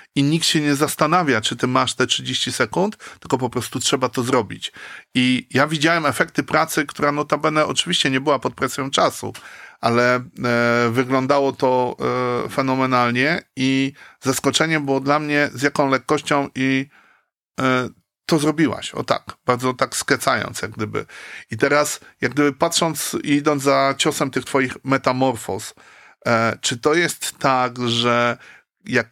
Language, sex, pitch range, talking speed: Polish, male, 125-150 Hz, 155 wpm